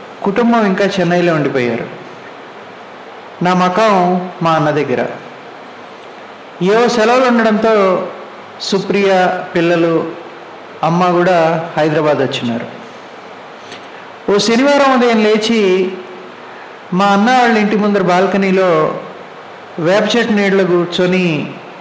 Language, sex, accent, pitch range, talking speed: Telugu, male, native, 175-220 Hz, 90 wpm